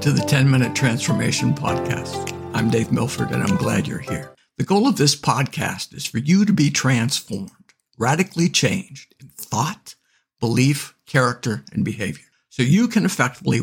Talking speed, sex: 160 wpm, male